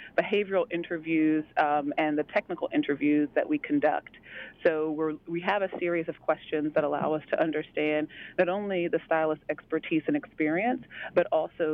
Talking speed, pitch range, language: 165 wpm, 150-175 Hz, English